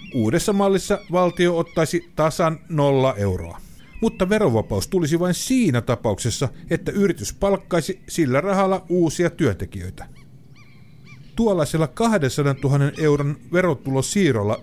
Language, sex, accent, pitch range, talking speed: Finnish, male, native, 115-165 Hz, 105 wpm